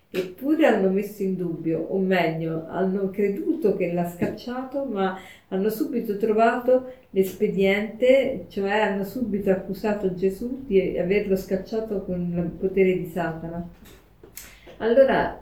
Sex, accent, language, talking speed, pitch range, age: female, native, Italian, 120 wpm, 180-225 Hz, 40-59